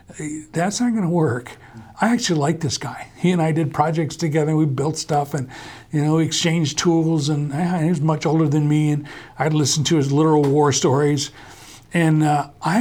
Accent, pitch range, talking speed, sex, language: American, 135-170 Hz, 205 wpm, male, English